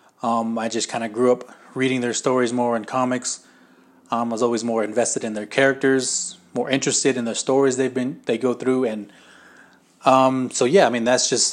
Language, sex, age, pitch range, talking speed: English, male, 20-39, 115-130 Hz, 210 wpm